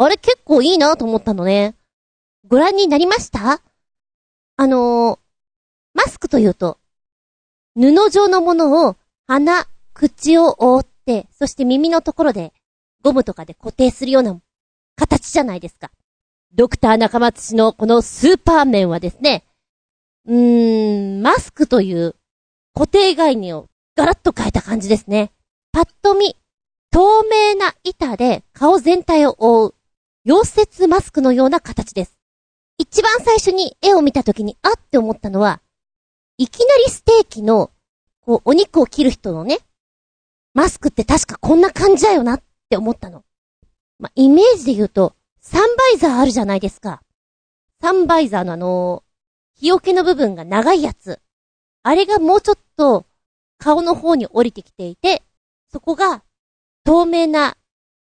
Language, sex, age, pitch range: Japanese, female, 40-59, 220-345 Hz